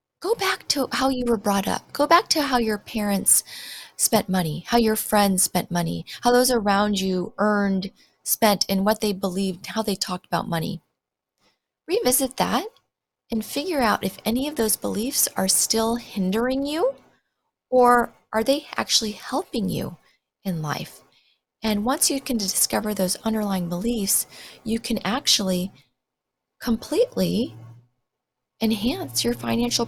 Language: English